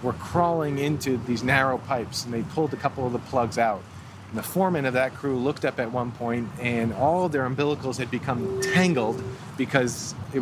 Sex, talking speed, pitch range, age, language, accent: male, 200 wpm, 120-145 Hz, 30-49, English, American